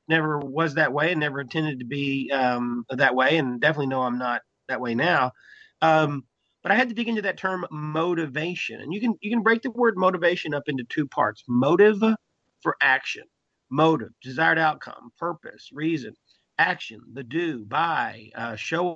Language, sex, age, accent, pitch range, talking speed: English, male, 40-59, American, 140-170 Hz, 180 wpm